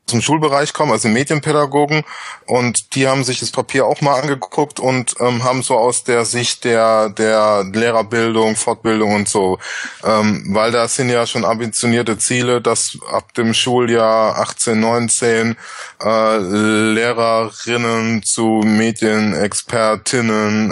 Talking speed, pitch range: 130 wpm, 110-125 Hz